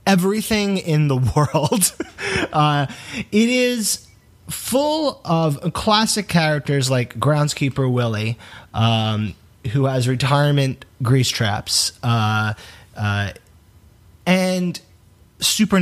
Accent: American